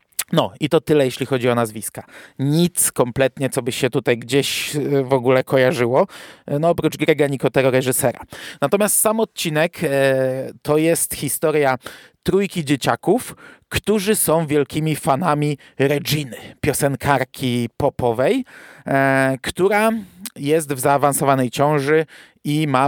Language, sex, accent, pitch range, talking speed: Polish, male, native, 130-150 Hz, 120 wpm